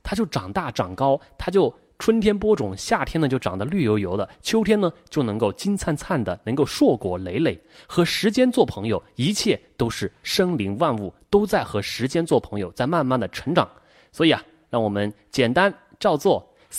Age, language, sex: 30-49, Chinese, male